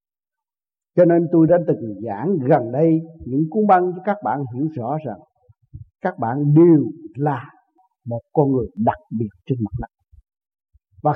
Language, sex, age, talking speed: Vietnamese, male, 60-79, 160 wpm